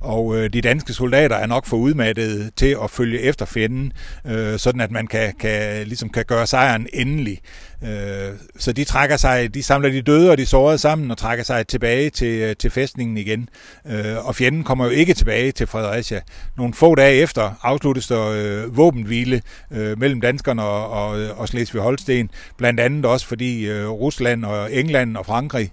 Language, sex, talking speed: Danish, male, 175 wpm